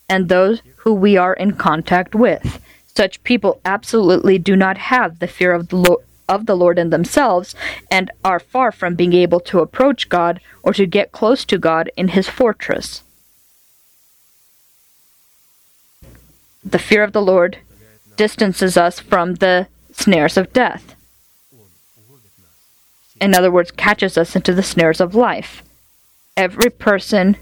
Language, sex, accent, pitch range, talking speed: English, female, American, 170-205 Hz, 140 wpm